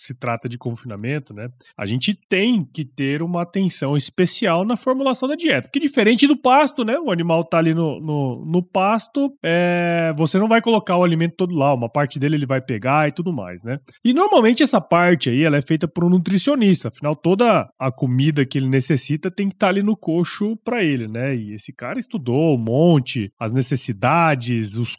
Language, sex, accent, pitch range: Portuguese, male, Brazilian, 140-195 Hz